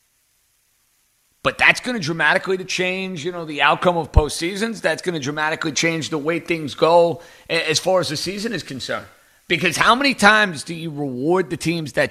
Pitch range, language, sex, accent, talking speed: 135-175 Hz, English, male, American, 190 wpm